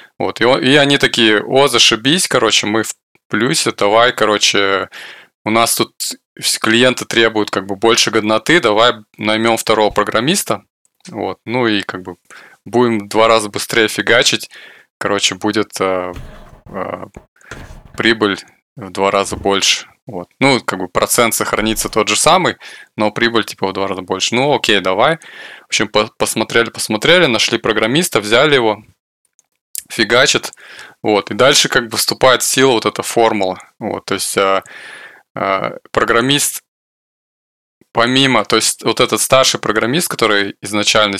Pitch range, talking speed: 100-115 Hz, 135 wpm